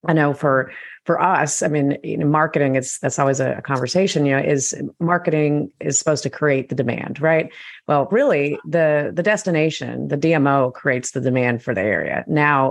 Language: English